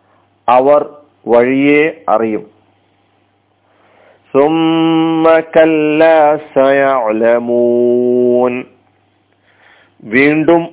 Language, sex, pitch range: Malayalam, male, 100-150 Hz